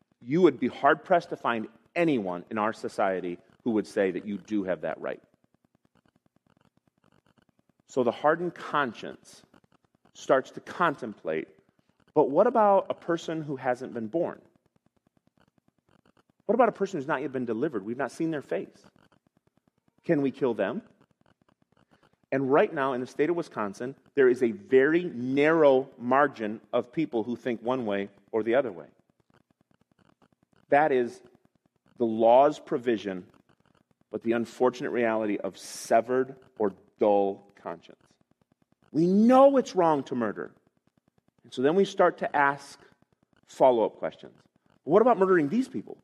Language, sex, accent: English, male, American